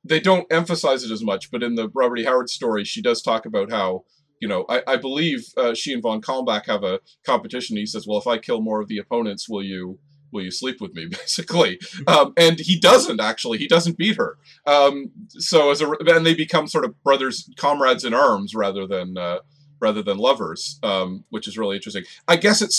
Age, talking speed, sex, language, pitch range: 40-59, 225 wpm, male, English, 115-185 Hz